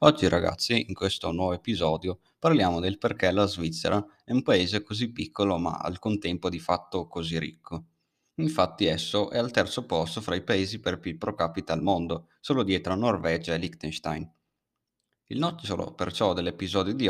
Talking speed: 170 wpm